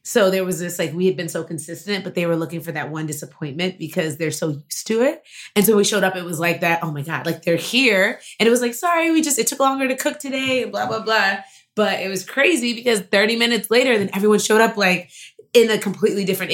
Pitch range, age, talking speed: 165-210 Hz, 20-39, 260 wpm